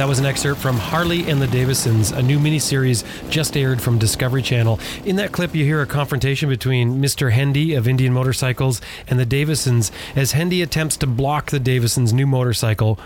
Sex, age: male, 30-49